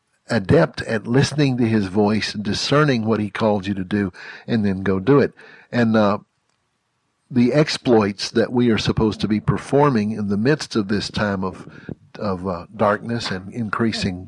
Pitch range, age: 110-140 Hz, 60-79